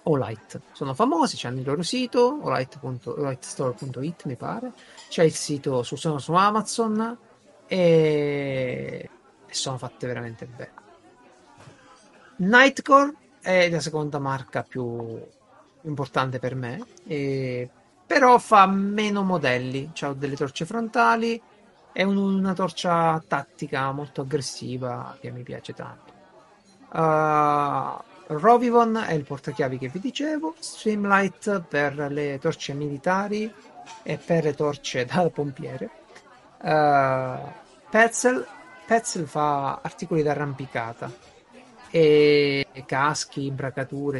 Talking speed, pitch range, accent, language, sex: 105 wpm, 135-185 Hz, native, Italian, male